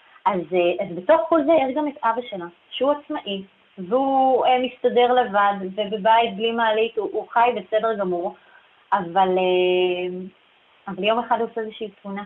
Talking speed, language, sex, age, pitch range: 150 wpm, Hebrew, female, 30-49, 185-245 Hz